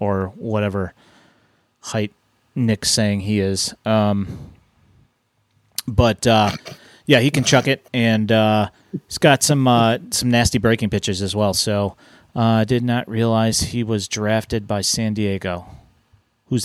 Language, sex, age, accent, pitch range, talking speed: English, male, 30-49, American, 110-125 Hz, 140 wpm